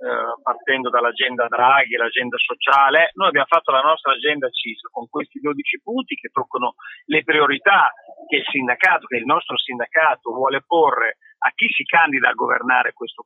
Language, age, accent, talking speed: Italian, 40-59, native, 170 wpm